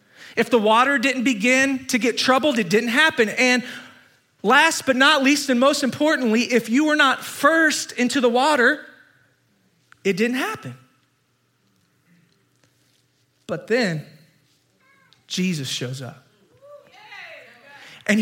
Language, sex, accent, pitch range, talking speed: English, male, American, 150-220 Hz, 120 wpm